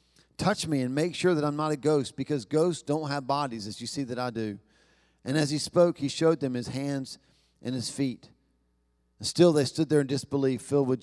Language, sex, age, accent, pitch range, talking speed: English, male, 40-59, American, 130-160 Hz, 230 wpm